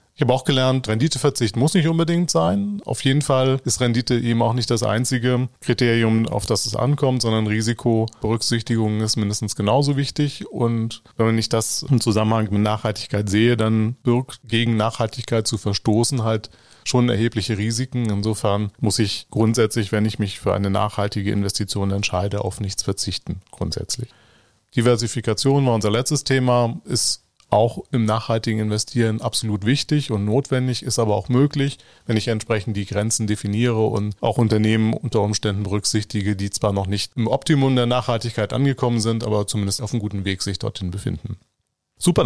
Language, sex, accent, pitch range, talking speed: German, male, German, 105-125 Hz, 165 wpm